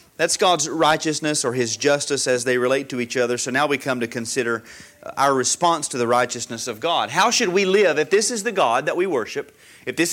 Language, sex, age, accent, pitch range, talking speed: English, male, 30-49, American, 145-210 Hz, 230 wpm